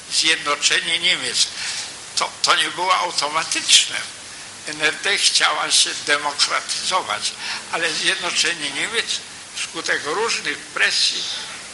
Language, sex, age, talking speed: Polish, male, 60-79, 85 wpm